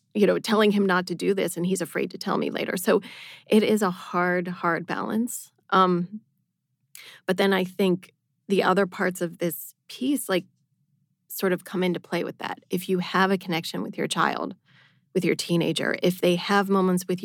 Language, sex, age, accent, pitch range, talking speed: English, female, 30-49, American, 170-190 Hz, 200 wpm